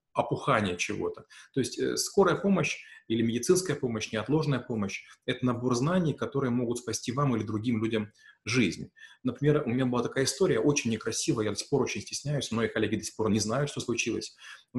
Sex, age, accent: male, 30-49, native